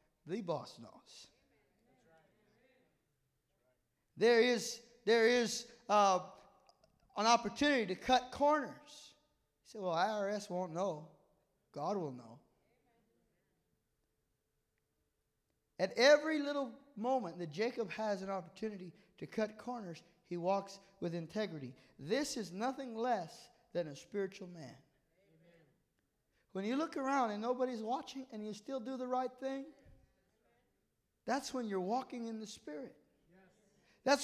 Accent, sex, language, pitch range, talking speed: American, male, English, 195-280 Hz, 120 wpm